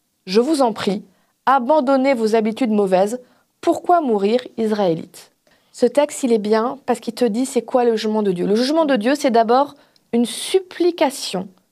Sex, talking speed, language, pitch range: female, 180 wpm, French, 215-265 Hz